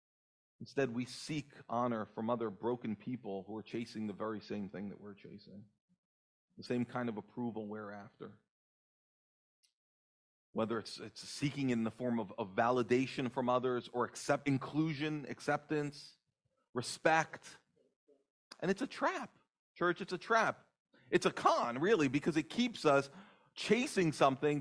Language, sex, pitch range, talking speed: English, male, 115-175 Hz, 145 wpm